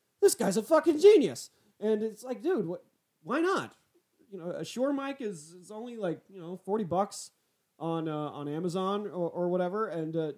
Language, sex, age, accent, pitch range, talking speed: English, male, 30-49, American, 170-250 Hz, 195 wpm